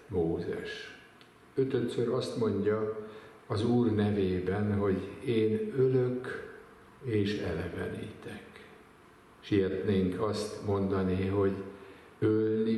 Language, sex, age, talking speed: Hungarian, male, 60-79, 80 wpm